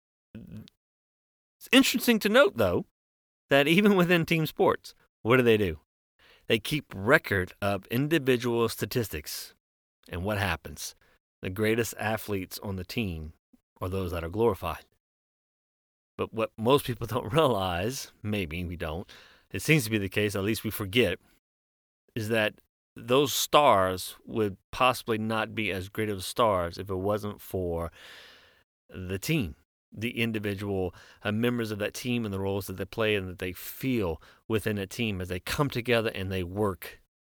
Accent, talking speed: American, 160 wpm